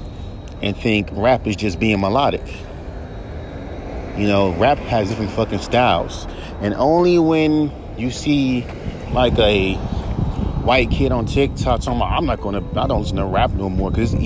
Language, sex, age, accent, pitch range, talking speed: English, male, 30-49, American, 90-135 Hz, 155 wpm